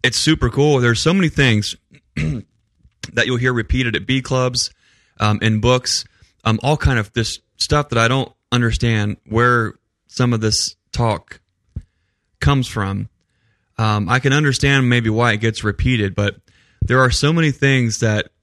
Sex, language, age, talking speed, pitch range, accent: male, English, 20-39, 165 wpm, 110-130 Hz, American